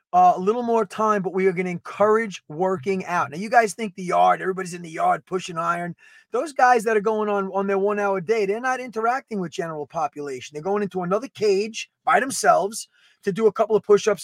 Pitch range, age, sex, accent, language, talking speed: 195-235 Hz, 30-49, male, American, English, 230 wpm